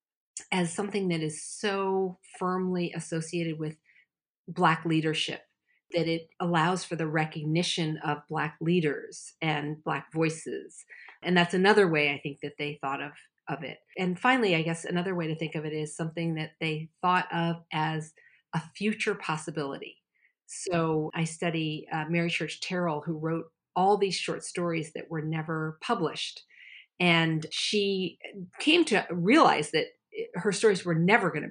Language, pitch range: English, 155-190 Hz